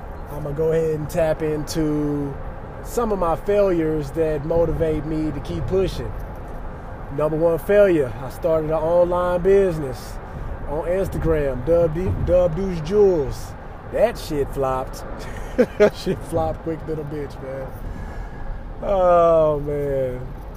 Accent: American